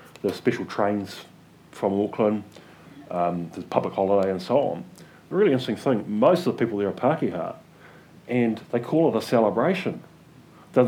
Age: 30-49